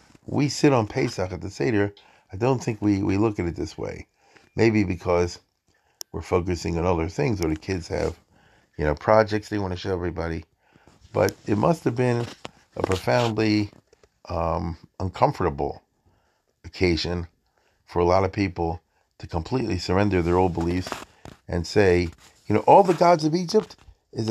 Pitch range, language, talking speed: 90-130 Hz, English, 165 wpm